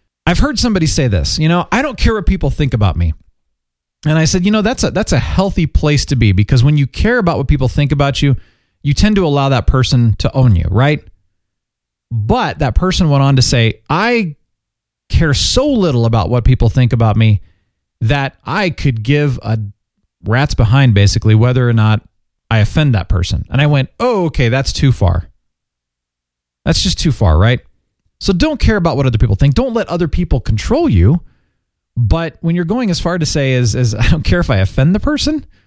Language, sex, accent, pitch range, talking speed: English, male, American, 105-165 Hz, 205 wpm